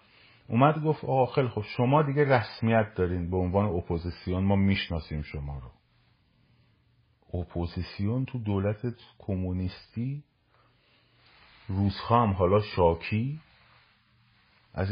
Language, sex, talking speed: Persian, male, 95 wpm